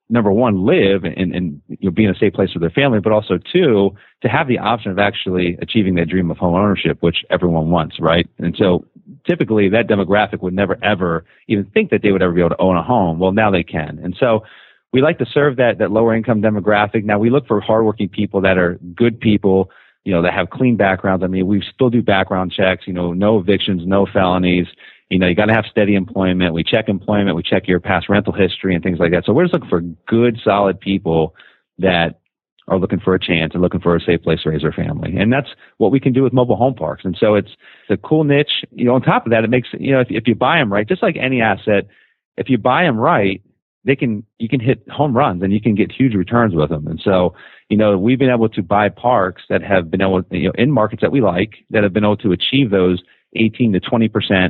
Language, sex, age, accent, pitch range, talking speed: English, male, 30-49, American, 90-110 Hz, 250 wpm